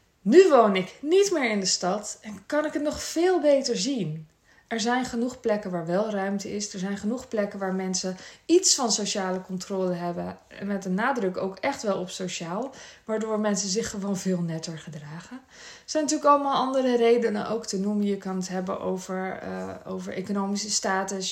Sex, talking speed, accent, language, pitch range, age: female, 190 wpm, Dutch, Dutch, 185-230 Hz, 20-39